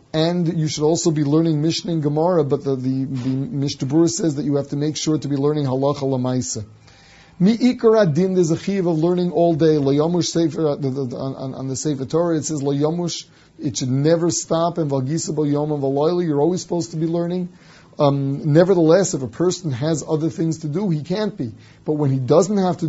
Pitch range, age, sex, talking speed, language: 135-165 Hz, 30-49, male, 205 wpm, English